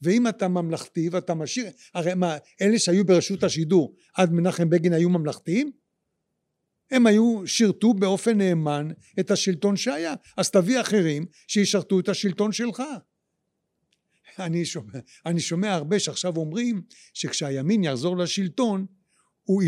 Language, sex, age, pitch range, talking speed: Hebrew, male, 60-79, 165-195 Hz, 130 wpm